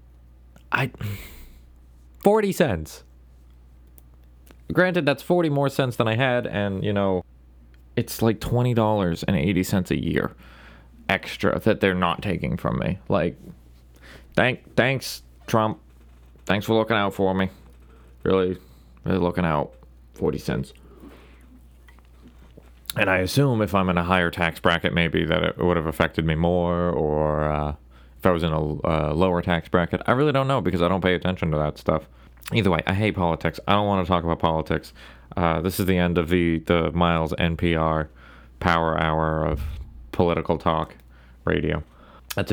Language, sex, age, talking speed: English, male, 20-39, 165 wpm